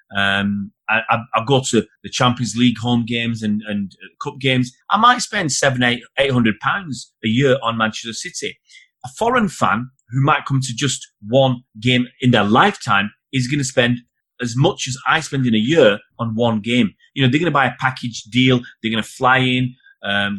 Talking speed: 210 wpm